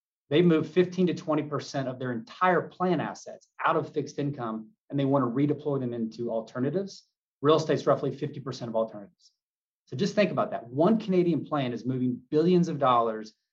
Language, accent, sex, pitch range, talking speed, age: English, American, male, 125-150 Hz, 180 wpm, 30-49